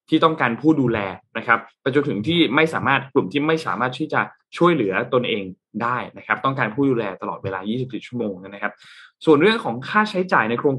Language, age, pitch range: Thai, 20-39, 115-155 Hz